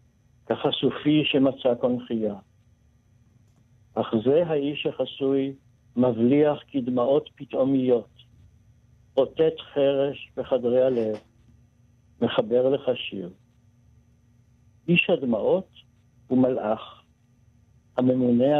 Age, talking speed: 60-79, 70 wpm